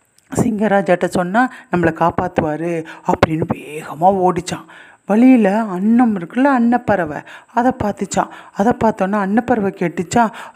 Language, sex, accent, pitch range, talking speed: Tamil, female, native, 180-235 Hz, 95 wpm